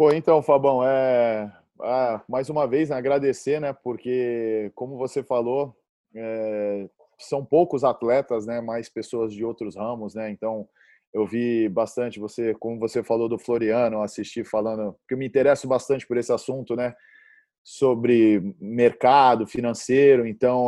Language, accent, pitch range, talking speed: English, Brazilian, 115-135 Hz, 150 wpm